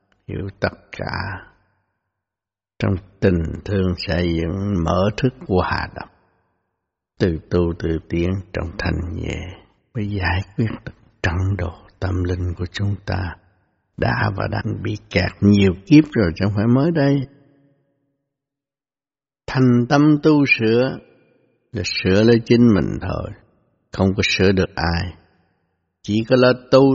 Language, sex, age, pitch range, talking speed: Vietnamese, male, 60-79, 90-115 Hz, 135 wpm